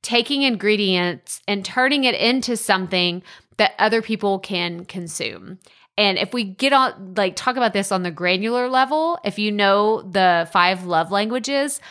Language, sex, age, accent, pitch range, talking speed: English, female, 20-39, American, 190-255 Hz, 160 wpm